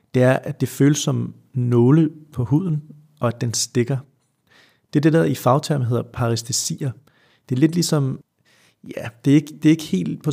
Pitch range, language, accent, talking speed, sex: 120-145 Hz, Danish, native, 195 wpm, male